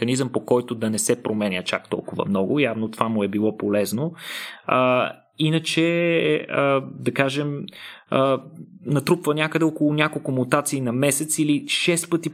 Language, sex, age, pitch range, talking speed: Bulgarian, male, 20-39, 115-150 Hz, 150 wpm